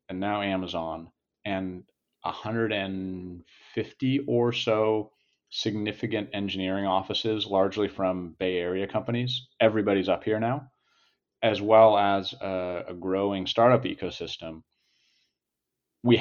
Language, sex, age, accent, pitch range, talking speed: English, male, 40-59, American, 95-115 Hz, 105 wpm